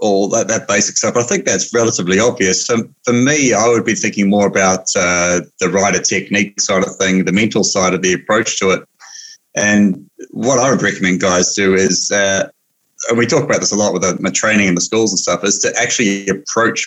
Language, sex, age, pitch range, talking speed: English, male, 30-49, 95-115 Hz, 230 wpm